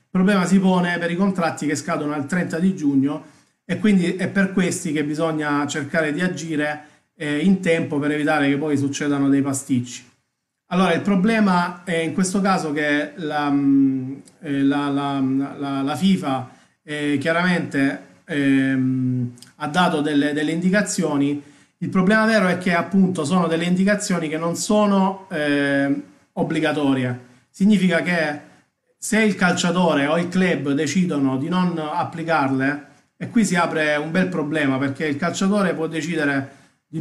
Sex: male